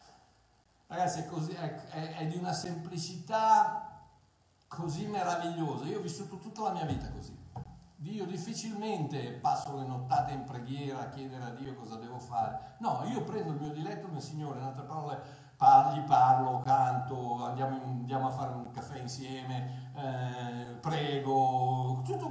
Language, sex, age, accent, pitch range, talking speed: Italian, male, 60-79, native, 120-170 Hz, 150 wpm